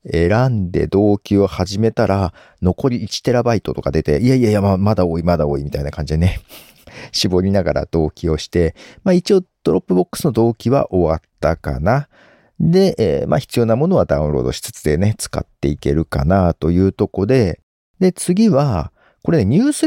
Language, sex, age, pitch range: Japanese, male, 50-69, 85-135 Hz